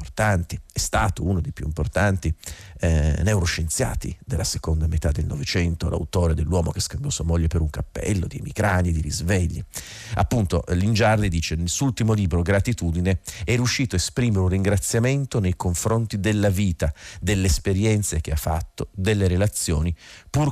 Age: 40-59